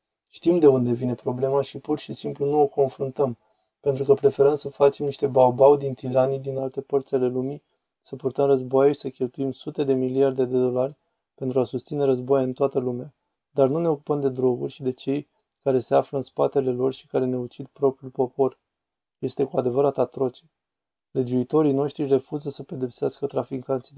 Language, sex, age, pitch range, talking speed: Romanian, male, 20-39, 130-140 Hz, 185 wpm